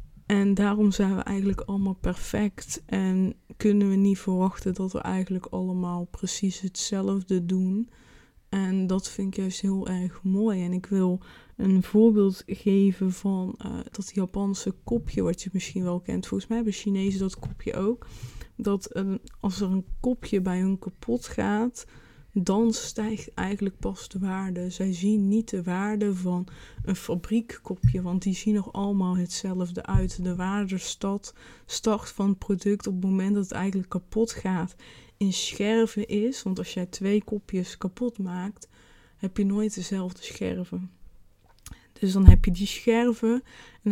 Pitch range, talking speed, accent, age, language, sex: 185-205 Hz, 160 wpm, Dutch, 20-39, Dutch, female